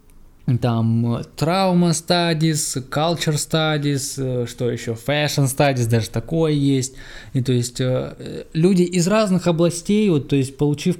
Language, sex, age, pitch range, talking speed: Russian, male, 20-39, 130-165 Hz, 110 wpm